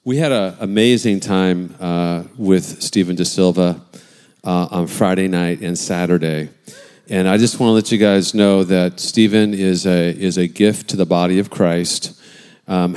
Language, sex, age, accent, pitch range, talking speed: English, male, 40-59, American, 90-110 Hz, 175 wpm